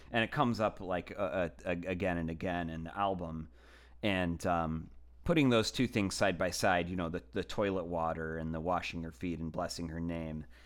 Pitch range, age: 80-100 Hz, 30-49